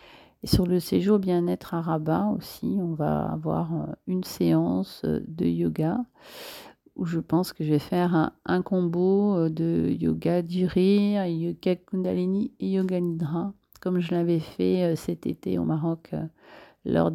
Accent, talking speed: French, 145 wpm